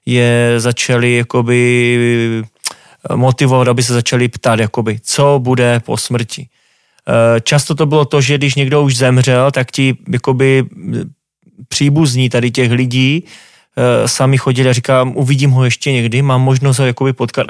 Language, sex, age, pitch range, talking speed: Slovak, male, 20-39, 125-140 Hz, 135 wpm